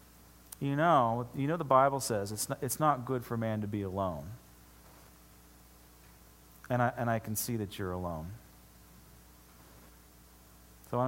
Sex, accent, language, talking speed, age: male, American, English, 145 wpm, 40-59